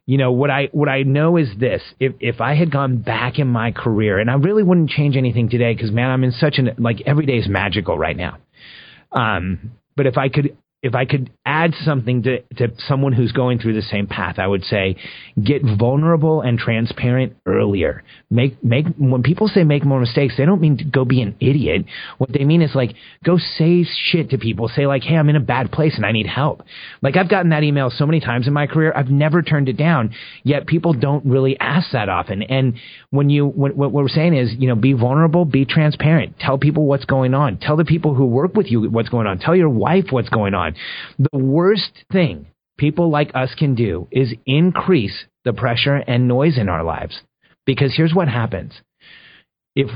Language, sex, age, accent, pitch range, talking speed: English, male, 30-49, American, 120-150 Hz, 220 wpm